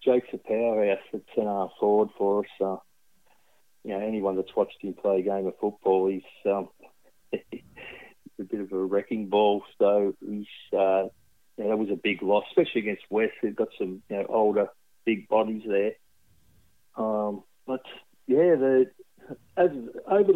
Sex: male